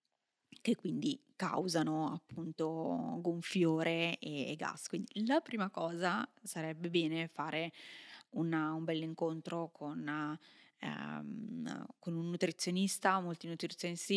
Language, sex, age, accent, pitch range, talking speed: Italian, female, 20-39, native, 160-195 Hz, 95 wpm